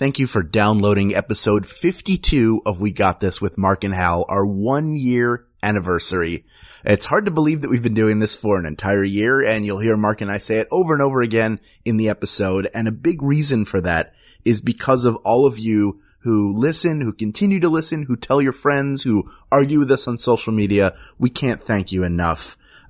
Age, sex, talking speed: 20-39, male, 205 wpm